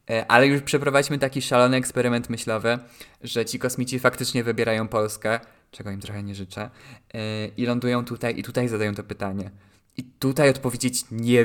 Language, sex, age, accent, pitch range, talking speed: Polish, male, 20-39, native, 110-125 Hz, 155 wpm